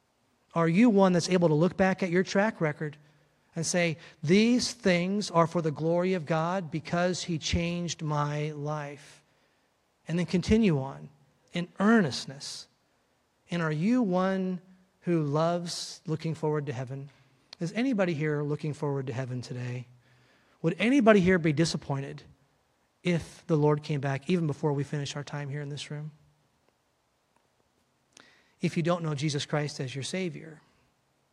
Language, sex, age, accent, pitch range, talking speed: English, male, 30-49, American, 145-175 Hz, 155 wpm